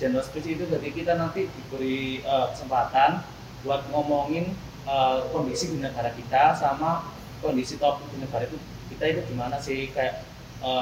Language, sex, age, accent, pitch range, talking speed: Indonesian, male, 20-39, native, 130-160 Hz, 150 wpm